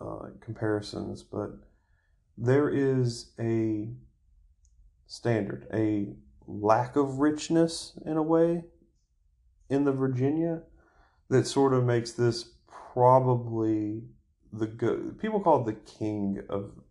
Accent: American